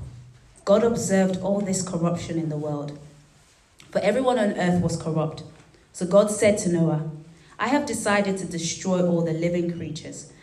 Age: 20-39